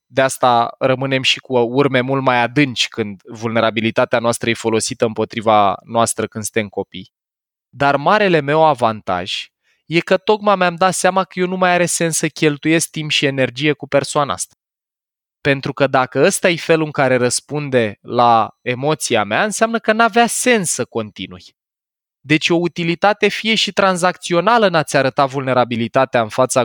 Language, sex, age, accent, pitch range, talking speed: Romanian, male, 20-39, native, 120-170 Hz, 165 wpm